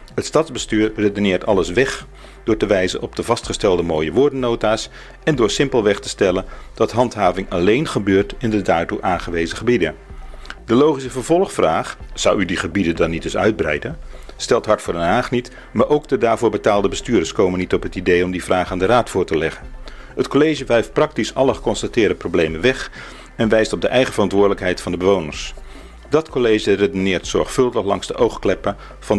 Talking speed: 185 wpm